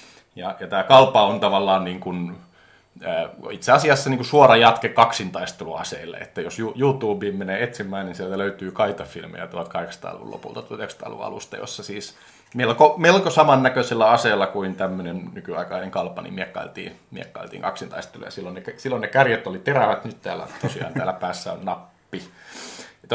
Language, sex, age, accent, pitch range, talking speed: Finnish, male, 30-49, native, 95-115 Hz, 155 wpm